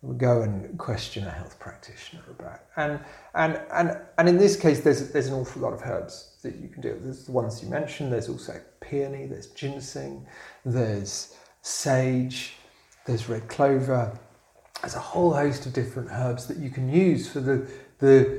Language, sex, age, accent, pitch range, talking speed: English, male, 40-59, British, 120-150 Hz, 180 wpm